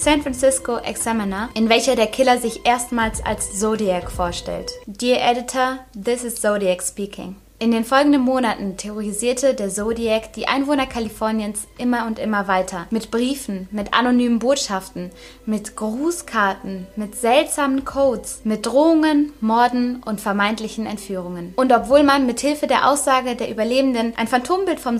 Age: 20-39